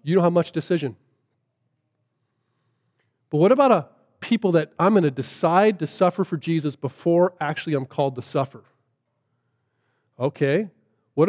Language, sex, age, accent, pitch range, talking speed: English, male, 40-59, American, 130-215 Hz, 145 wpm